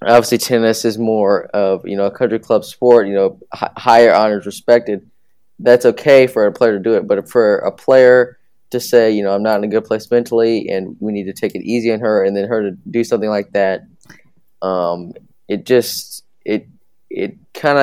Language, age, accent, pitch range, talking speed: English, 20-39, American, 100-115 Hz, 210 wpm